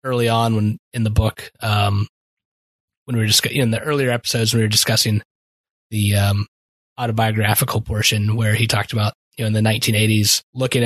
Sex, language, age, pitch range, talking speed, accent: male, English, 20-39, 105-120 Hz, 190 wpm, American